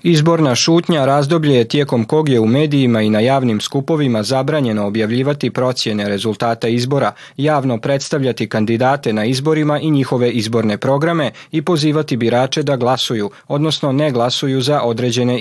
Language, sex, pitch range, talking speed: Croatian, male, 115-145 Hz, 145 wpm